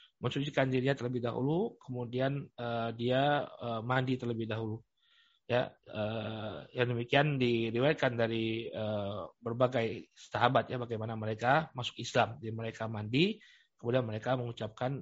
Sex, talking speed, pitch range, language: male, 125 wpm, 120-155 Hz, Indonesian